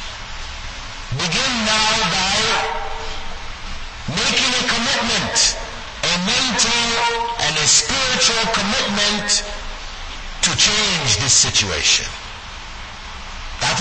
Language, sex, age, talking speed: English, male, 60-79, 75 wpm